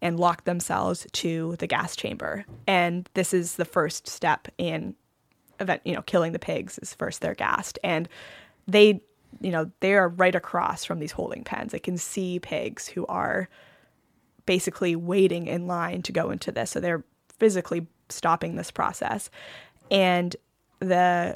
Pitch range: 175-190 Hz